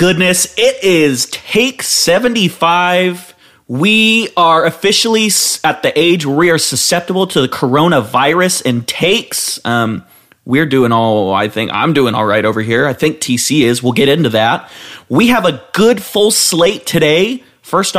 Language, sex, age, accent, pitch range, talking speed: English, male, 30-49, American, 115-170 Hz, 160 wpm